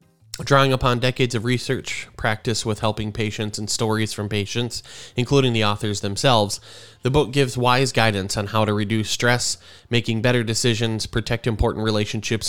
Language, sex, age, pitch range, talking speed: English, male, 20-39, 105-120 Hz, 160 wpm